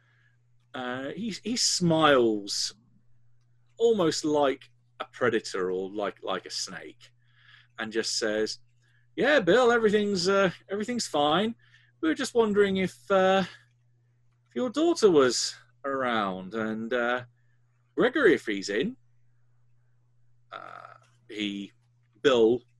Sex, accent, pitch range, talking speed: male, British, 120-180 Hz, 110 wpm